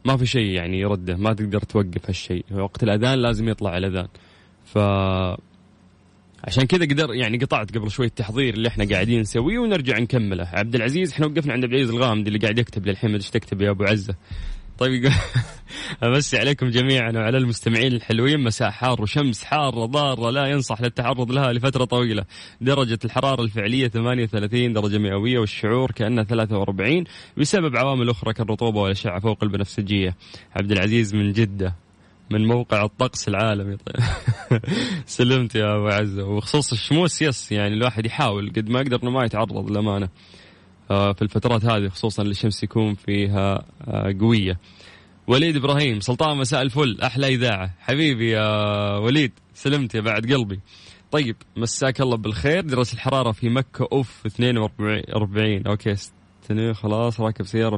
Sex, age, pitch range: male, 20-39, 100-130 Hz